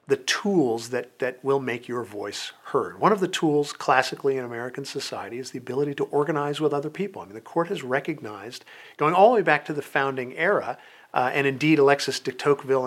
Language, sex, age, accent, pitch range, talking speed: English, male, 50-69, American, 120-150 Hz, 215 wpm